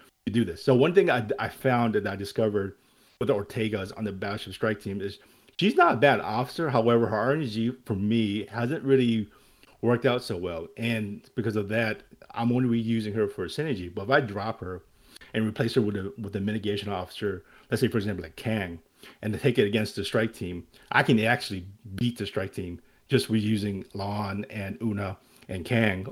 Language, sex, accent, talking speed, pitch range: English, male, American, 205 wpm, 100-120 Hz